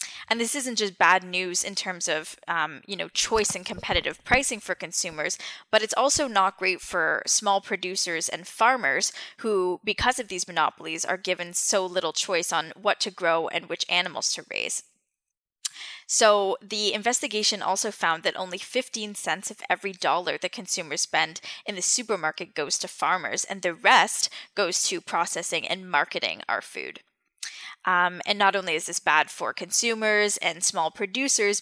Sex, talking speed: female, 170 wpm